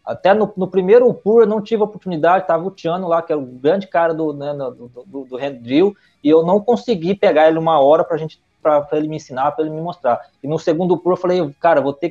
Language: Portuguese